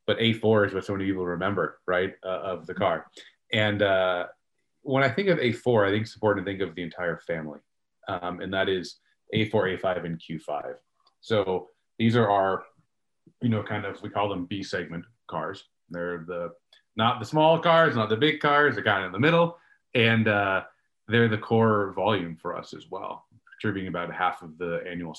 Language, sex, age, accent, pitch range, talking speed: English, male, 30-49, American, 95-115 Hz, 200 wpm